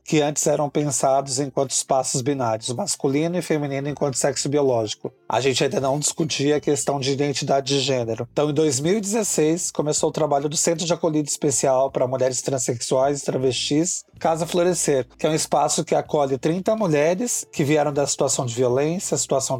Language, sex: Portuguese, male